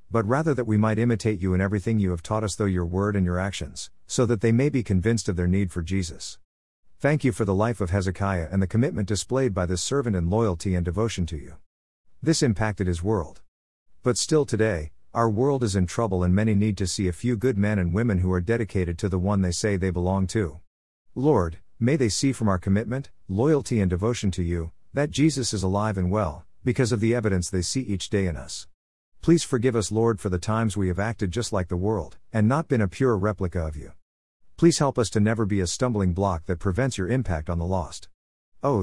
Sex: male